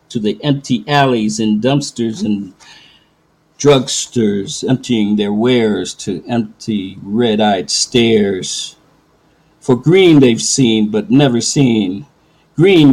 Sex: male